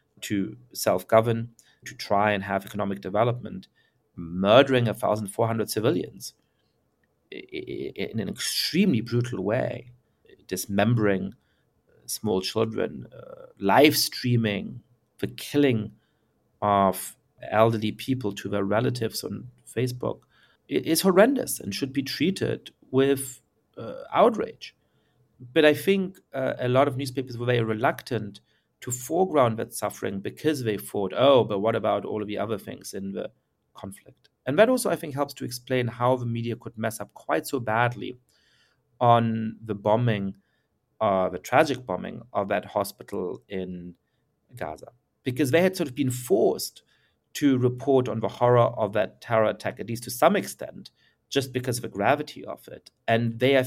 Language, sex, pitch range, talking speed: English, male, 105-135 Hz, 145 wpm